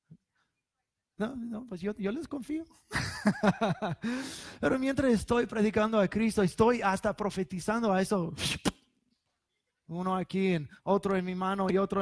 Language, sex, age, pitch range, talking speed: English, male, 30-49, 150-195 Hz, 130 wpm